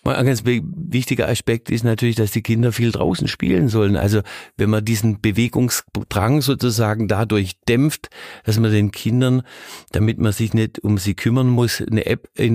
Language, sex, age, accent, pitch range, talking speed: German, male, 50-69, German, 105-125 Hz, 170 wpm